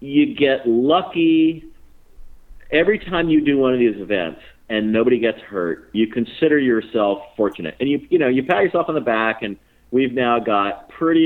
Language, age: English, 40-59